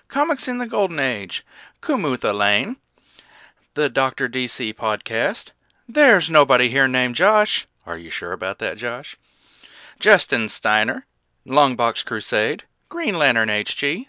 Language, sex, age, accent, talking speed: English, male, 40-59, American, 125 wpm